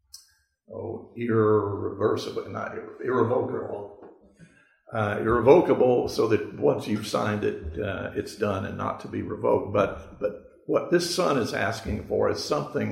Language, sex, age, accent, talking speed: English, male, 50-69, American, 145 wpm